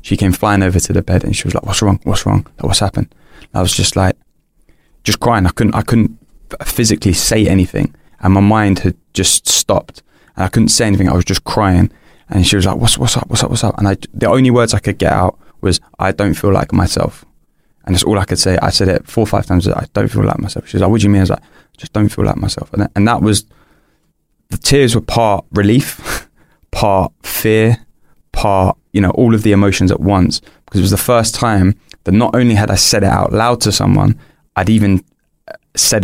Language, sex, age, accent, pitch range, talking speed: English, male, 20-39, British, 95-110 Hz, 240 wpm